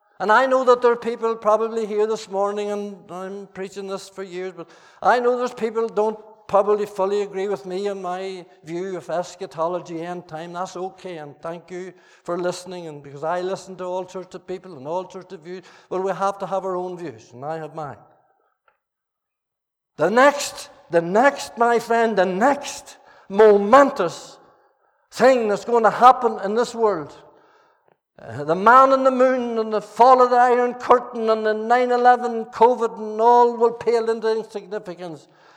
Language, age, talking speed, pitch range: English, 60-79, 185 wpm, 185-240 Hz